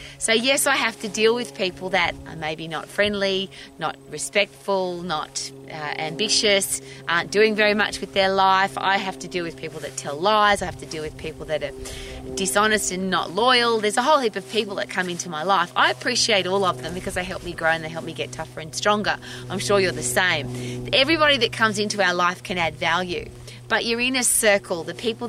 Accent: Australian